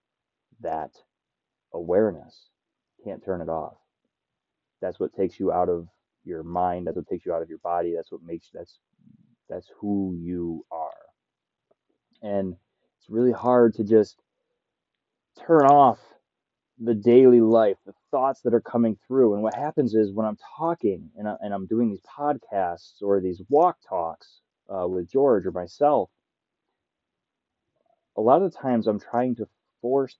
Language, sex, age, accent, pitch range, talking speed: English, male, 20-39, American, 95-120 Hz, 155 wpm